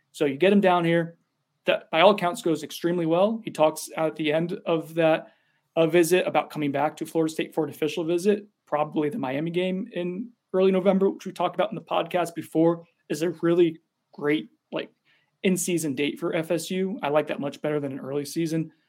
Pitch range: 150-180 Hz